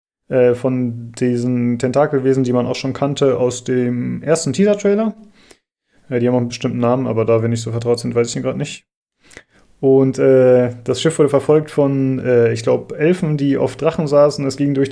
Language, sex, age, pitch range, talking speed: German, male, 30-49, 125-145 Hz, 195 wpm